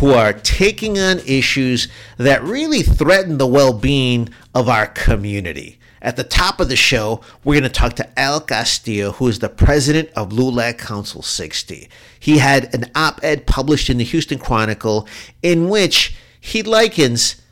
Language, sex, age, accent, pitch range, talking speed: English, male, 50-69, American, 110-150 Hz, 160 wpm